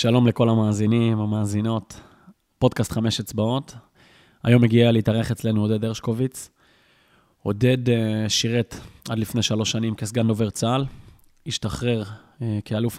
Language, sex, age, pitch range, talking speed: Hebrew, male, 20-39, 110-125 Hz, 110 wpm